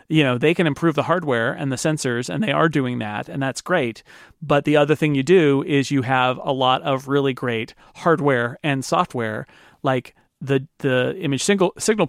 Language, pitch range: English, 130-165 Hz